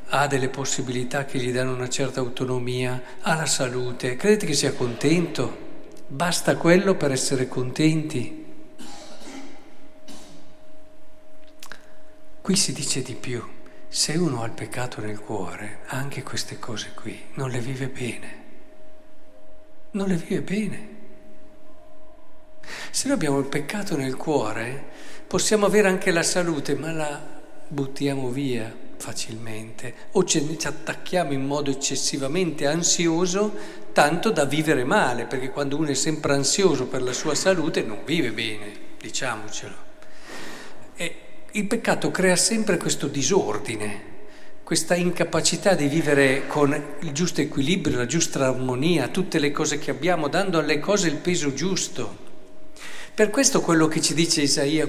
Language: Italian